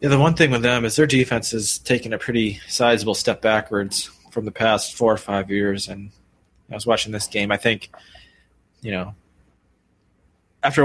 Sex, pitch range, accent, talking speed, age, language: male, 100-115 Hz, American, 190 wpm, 20-39, English